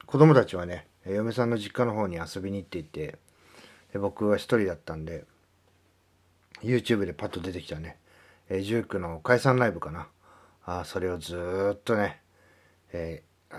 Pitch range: 90-115 Hz